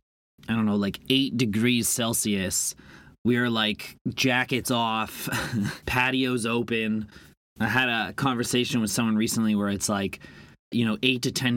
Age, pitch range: 30-49, 100-120 Hz